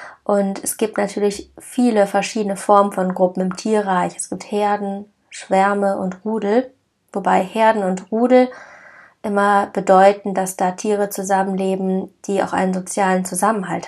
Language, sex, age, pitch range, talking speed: German, female, 20-39, 185-210 Hz, 140 wpm